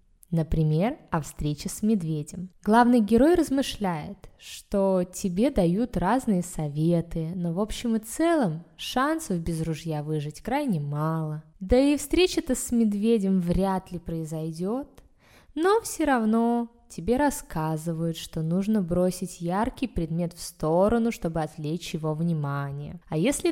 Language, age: Russian, 20-39